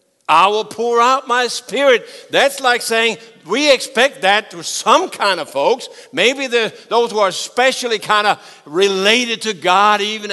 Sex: male